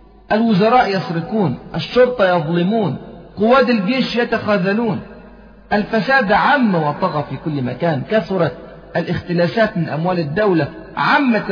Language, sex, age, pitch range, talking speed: Arabic, male, 40-59, 155-215 Hz, 100 wpm